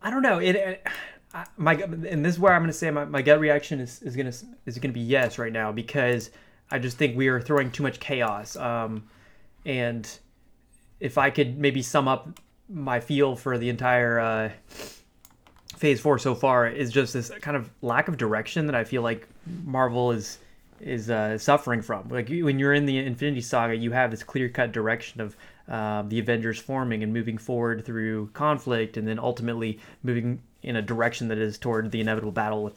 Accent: American